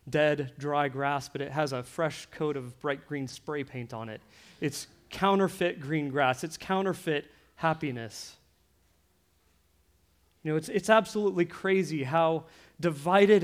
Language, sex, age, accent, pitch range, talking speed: English, male, 30-49, American, 145-210 Hz, 140 wpm